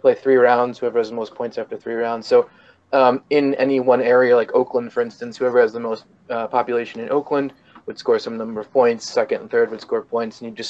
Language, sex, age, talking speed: English, male, 20-39, 245 wpm